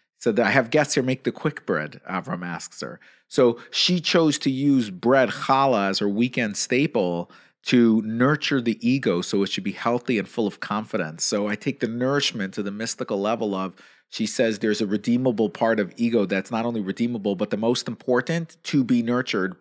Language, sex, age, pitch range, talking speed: English, male, 40-59, 105-130 Hz, 195 wpm